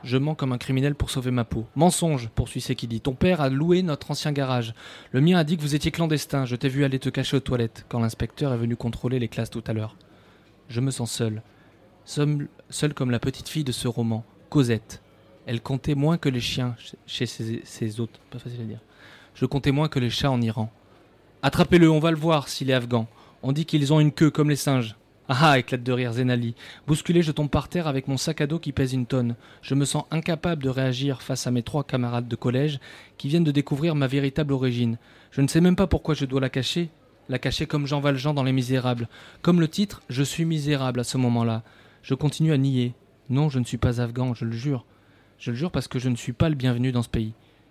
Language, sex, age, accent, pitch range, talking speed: French, male, 20-39, French, 120-145 Hz, 240 wpm